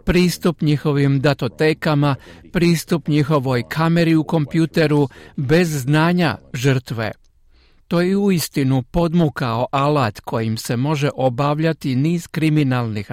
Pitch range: 120-160 Hz